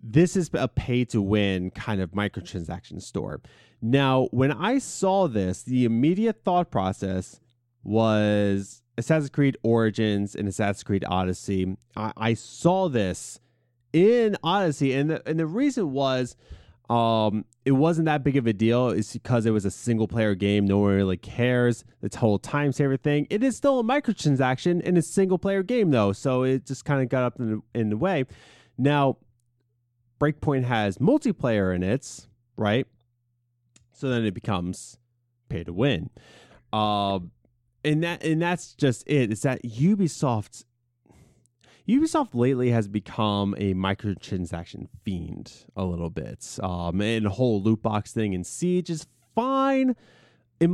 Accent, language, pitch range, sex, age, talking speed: American, English, 105-150 Hz, male, 30-49, 155 wpm